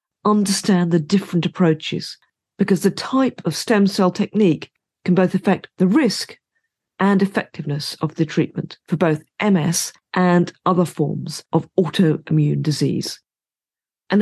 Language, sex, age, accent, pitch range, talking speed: English, female, 40-59, British, 165-210 Hz, 130 wpm